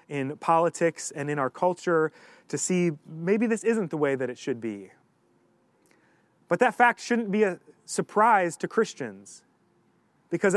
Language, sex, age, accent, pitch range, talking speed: English, male, 30-49, American, 160-210 Hz, 155 wpm